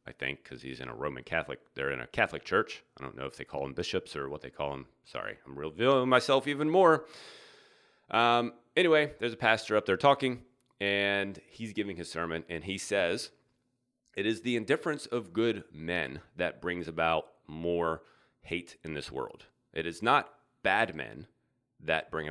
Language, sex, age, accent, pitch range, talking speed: English, male, 30-49, American, 85-120 Hz, 190 wpm